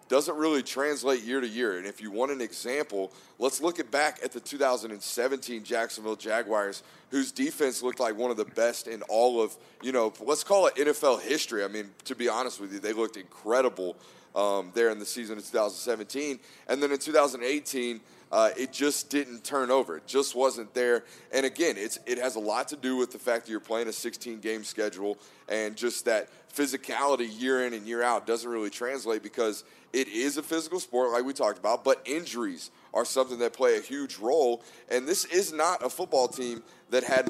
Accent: American